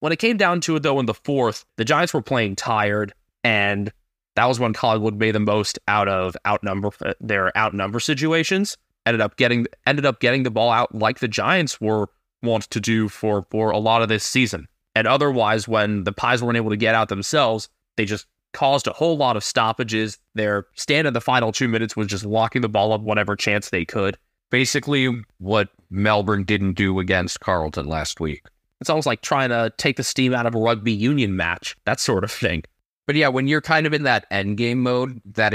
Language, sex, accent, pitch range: English, male, American, 100-130 Hz